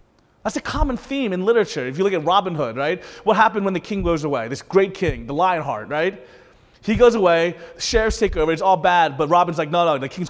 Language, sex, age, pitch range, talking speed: English, male, 30-49, 155-195 Hz, 250 wpm